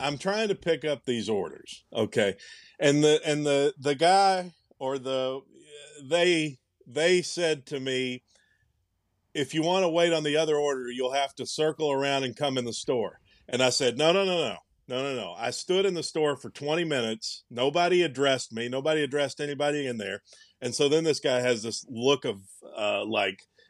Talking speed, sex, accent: 195 wpm, male, American